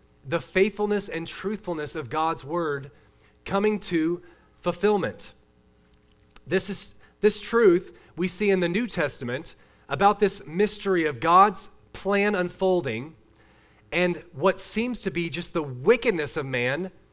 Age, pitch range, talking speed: 30-49, 160-205 Hz, 130 wpm